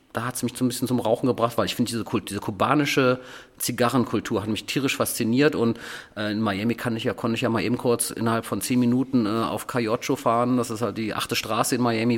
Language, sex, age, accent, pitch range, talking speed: German, male, 40-59, German, 105-120 Hz, 245 wpm